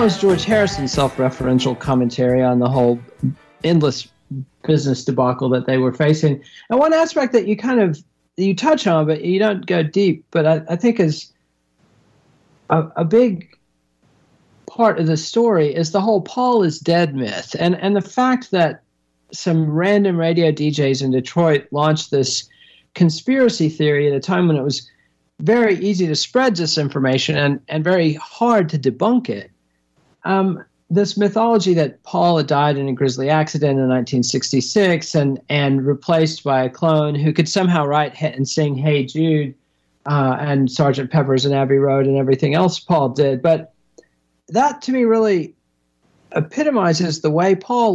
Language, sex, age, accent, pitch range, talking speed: English, male, 40-59, American, 135-180 Hz, 160 wpm